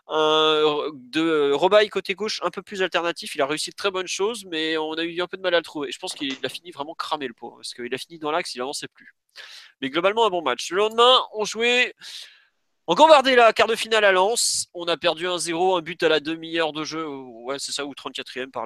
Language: French